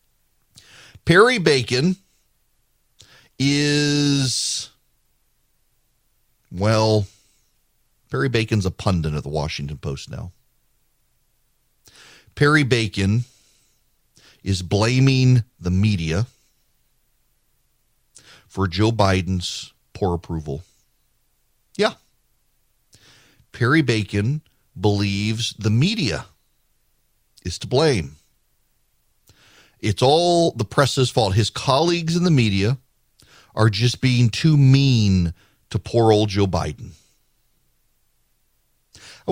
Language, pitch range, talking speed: English, 100-130 Hz, 80 wpm